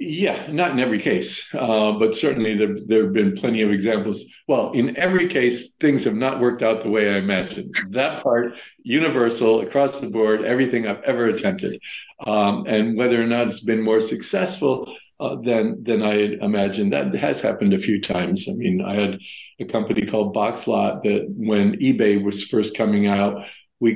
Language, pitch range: English, 105-125 Hz